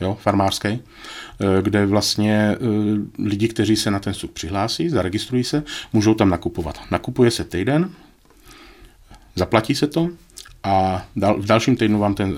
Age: 40-59